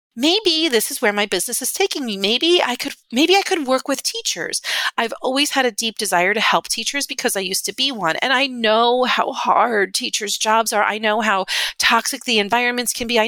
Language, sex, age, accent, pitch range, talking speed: English, female, 40-59, American, 210-285 Hz, 225 wpm